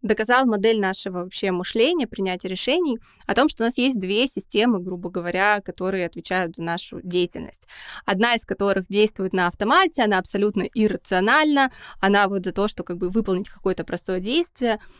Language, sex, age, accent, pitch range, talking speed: Russian, female, 20-39, native, 185-230 Hz, 170 wpm